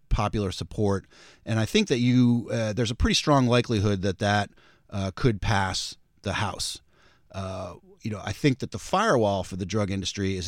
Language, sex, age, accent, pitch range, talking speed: English, male, 40-59, American, 100-115 Hz, 190 wpm